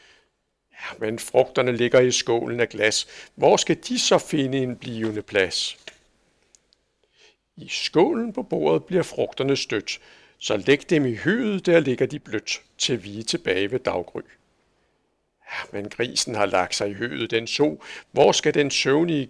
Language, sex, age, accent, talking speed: Danish, male, 60-79, native, 155 wpm